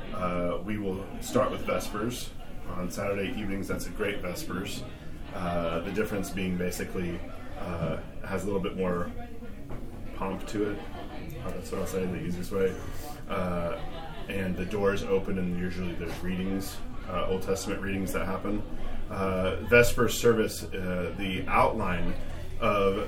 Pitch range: 90-110 Hz